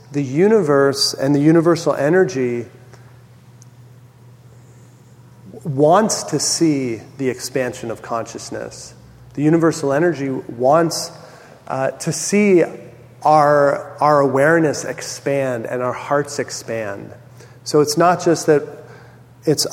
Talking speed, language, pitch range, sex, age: 105 wpm, English, 125-150 Hz, male, 40-59